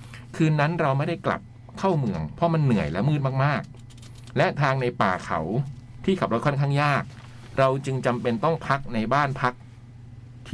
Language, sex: Thai, male